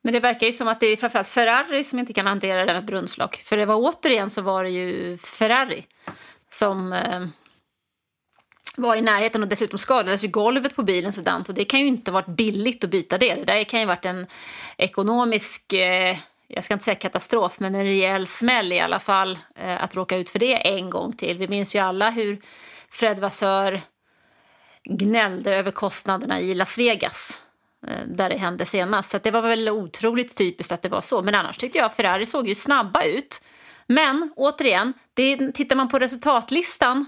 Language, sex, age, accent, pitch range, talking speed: English, female, 30-49, Swedish, 195-250 Hz, 200 wpm